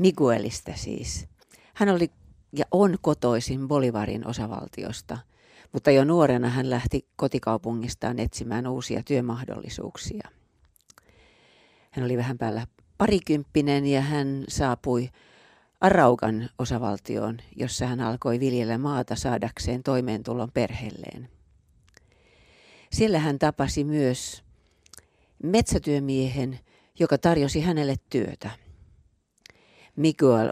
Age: 40-59